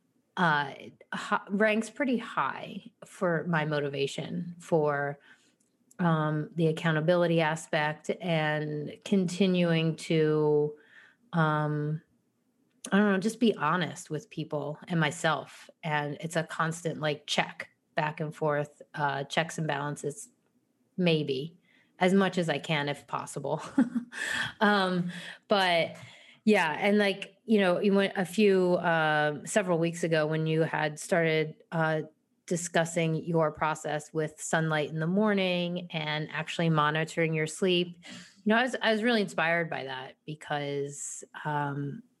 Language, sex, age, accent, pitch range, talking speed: English, female, 30-49, American, 150-195 Hz, 130 wpm